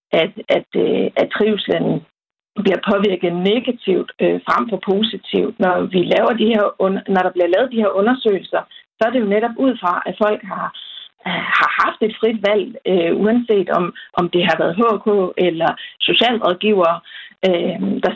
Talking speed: 140 wpm